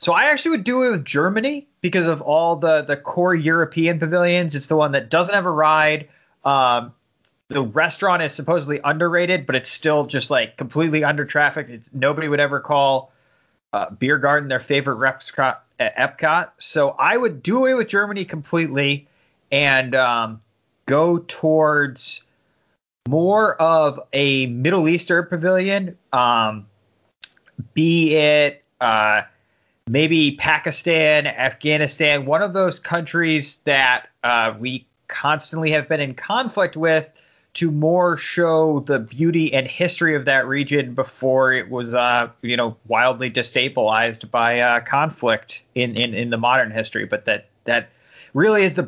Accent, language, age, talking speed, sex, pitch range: American, English, 30-49, 150 wpm, male, 125-165 Hz